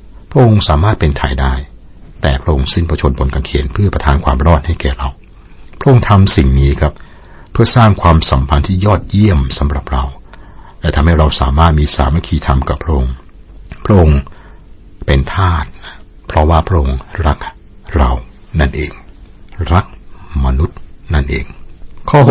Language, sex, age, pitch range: Thai, male, 60-79, 70-90 Hz